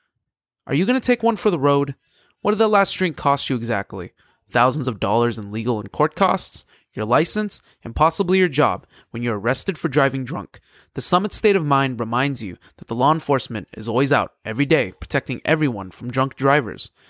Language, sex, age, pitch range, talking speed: English, male, 20-39, 125-175 Hz, 205 wpm